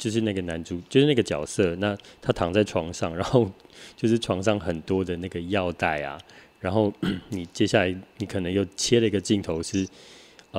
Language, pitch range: Chinese, 90-110 Hz